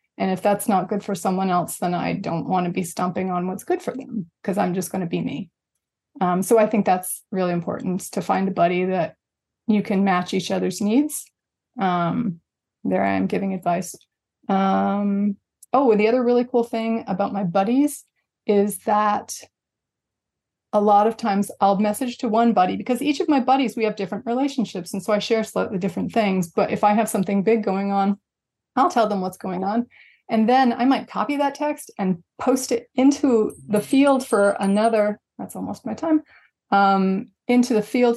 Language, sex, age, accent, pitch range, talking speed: English, female, 20-39, American, 195-235 Hz, 195 wpm